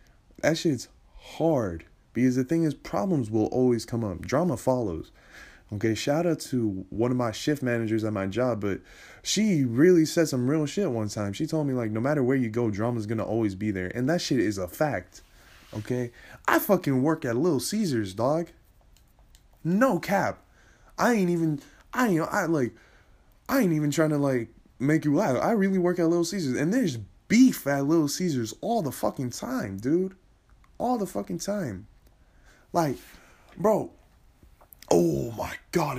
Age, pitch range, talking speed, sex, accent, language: 20-39, 115-170 Hz, 175 wpm, male, American, English